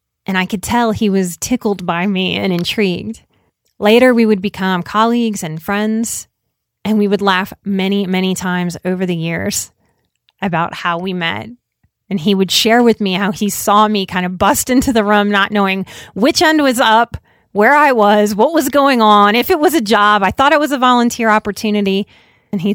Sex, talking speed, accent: female, 200 wpm, American